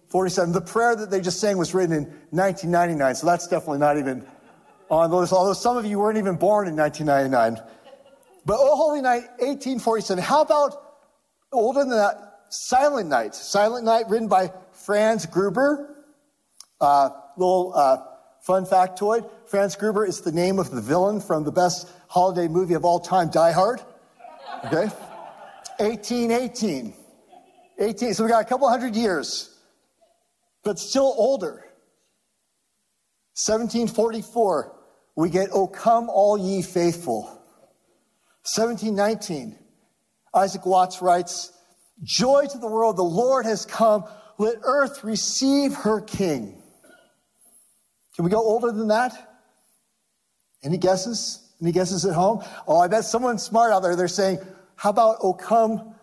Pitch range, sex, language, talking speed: 180-235 Hz, male, English, 140 wpm